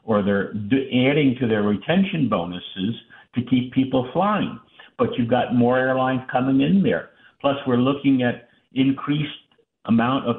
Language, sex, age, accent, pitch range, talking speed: English, male, 60-79, American, 110-140 Hz, 150 wpm